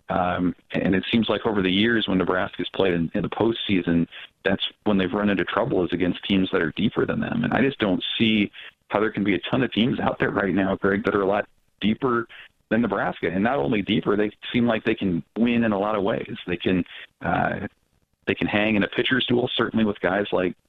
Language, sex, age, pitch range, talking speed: English, male, 40-59, 95-115 Hz, 240 wpm